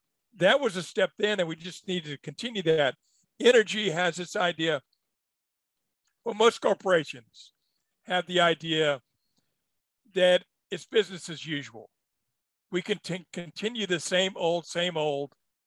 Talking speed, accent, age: 135 wpm, American, 50-69